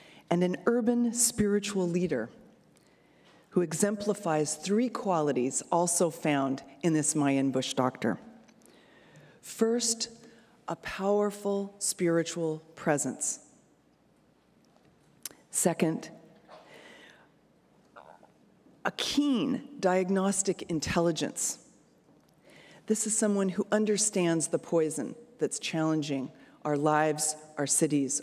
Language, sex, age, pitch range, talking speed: English, female, 40-59, 155-205 Hz, 85 wpm